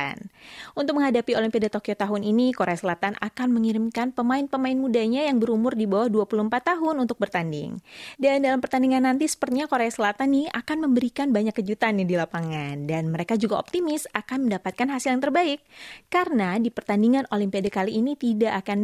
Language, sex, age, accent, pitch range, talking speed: Indonesian, female, 20-39, native, 190-250 Hz, 160 wpm